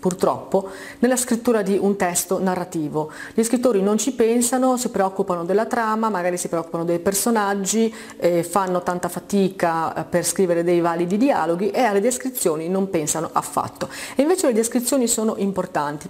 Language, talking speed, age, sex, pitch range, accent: Italian, 155 wpm, 40-59, female, 175-240 Hz, native